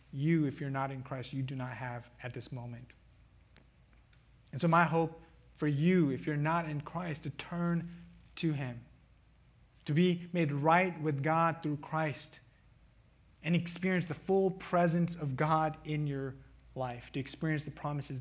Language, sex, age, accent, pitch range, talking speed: English, male, 30-49, American, 130-165 Hz, 165 wpm